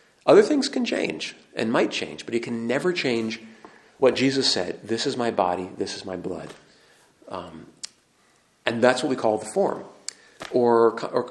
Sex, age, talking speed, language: male, 40-59, 175 wpm, English